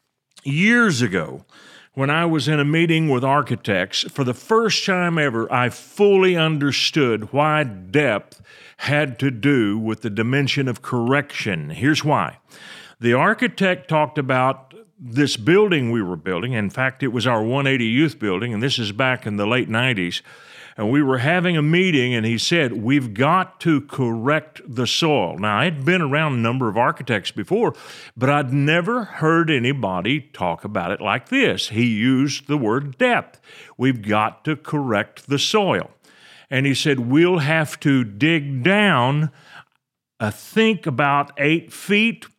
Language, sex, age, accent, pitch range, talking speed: English, male, 50-69, American, 120-155 Hz, 160 wpm